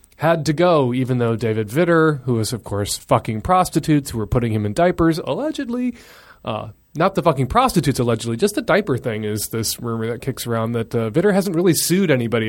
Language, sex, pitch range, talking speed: English, male, 115-165 Hz, 210 wpm